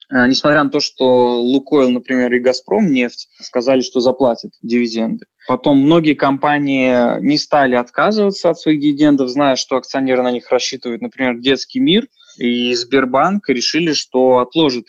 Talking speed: 145 wpm